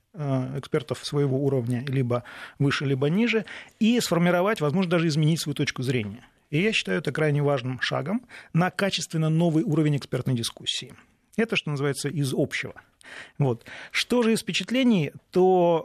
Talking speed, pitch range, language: 150 wpm, 135-170 Hz, Russian